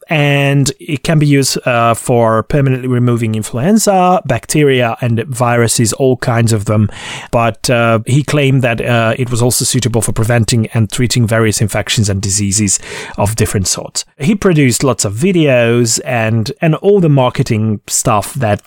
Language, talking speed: English, 160 wpm